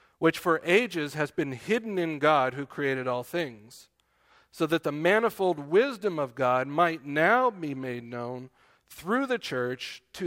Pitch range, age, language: 125-160 Hz, 50-69, English